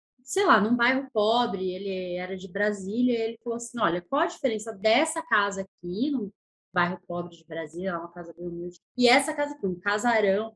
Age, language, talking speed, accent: 20-39, Portuguese, 200 wpm, Brazilian